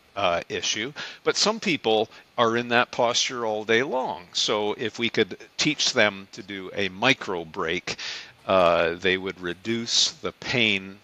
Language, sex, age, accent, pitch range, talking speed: English, male, 50-69, American, 110-145 Hz, 160 wpm